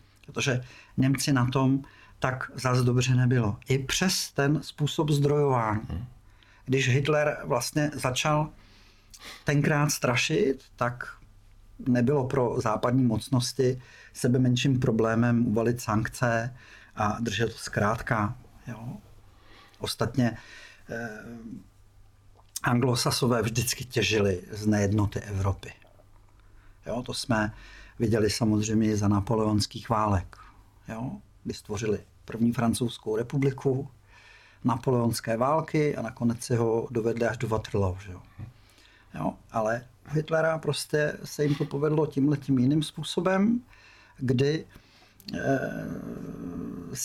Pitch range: 105-140 Hz